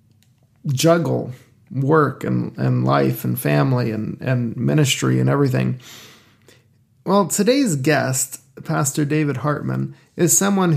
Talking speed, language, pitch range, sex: 110 wpm, English, 125-150 Hz, male